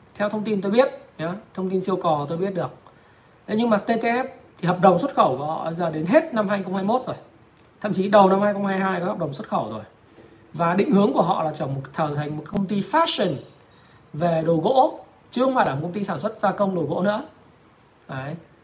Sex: male